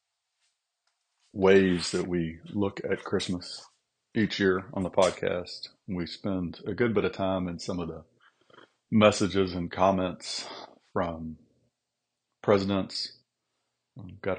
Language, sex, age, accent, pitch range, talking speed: English, male, 40-59, American, 85-100 Hz, 120 wpm